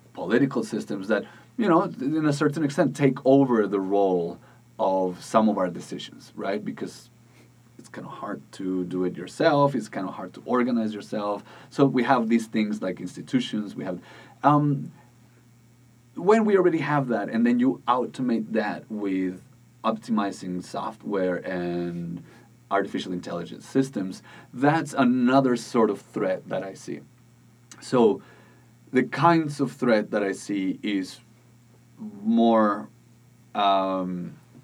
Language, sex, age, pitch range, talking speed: English, male, 30-49, 100-130 Hz, 140 wpm